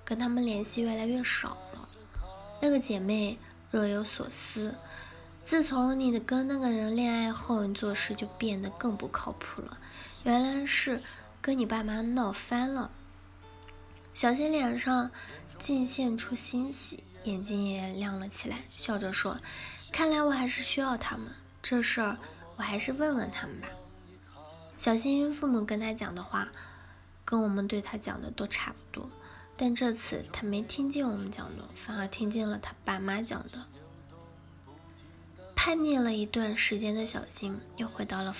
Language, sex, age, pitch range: Chinese, female, 10-29, 195-245 Hz